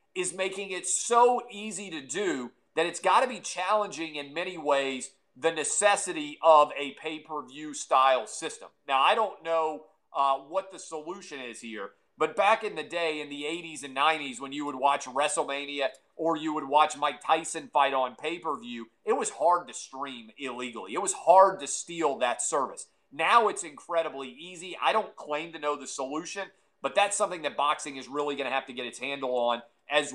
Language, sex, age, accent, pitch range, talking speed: English, male, 30-49, American, 135-175 Hz, 195 wpm